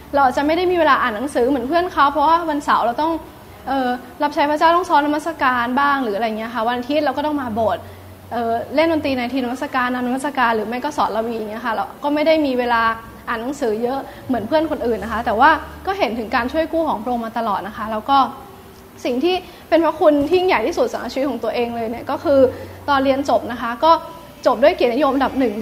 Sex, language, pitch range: female, Thai, 240-305 Hz